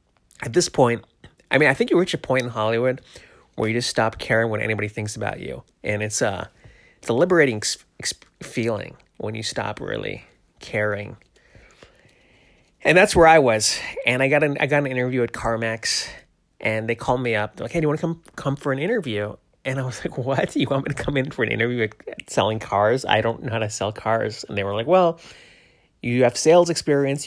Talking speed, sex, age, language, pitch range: 225 wpm, male, 30-49, English, 110-135 Hz